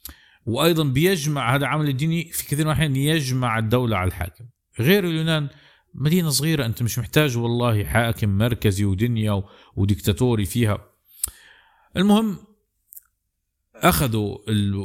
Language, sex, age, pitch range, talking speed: Arabic, male, 50-69, 105-140 Hz, 120 wpm